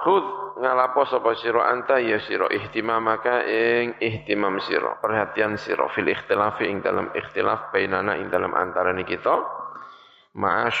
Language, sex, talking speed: Indonesian, male, 135 wpm